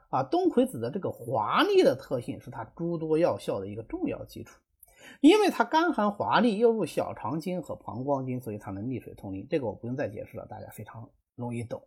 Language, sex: Chinese, male